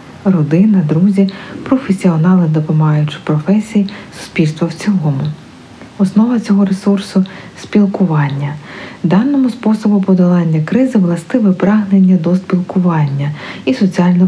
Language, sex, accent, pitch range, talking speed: Ukrainian, female, native, 160-205 Hz, 95 wpm